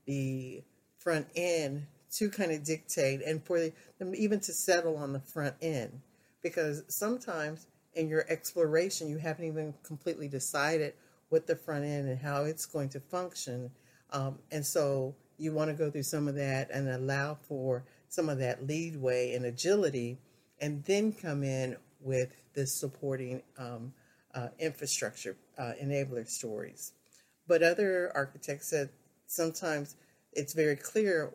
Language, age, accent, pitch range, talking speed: English, 50-69, American, 135-165 Hz, 150 wpm